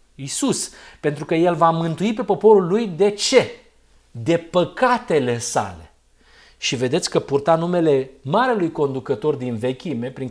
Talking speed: 140 wpm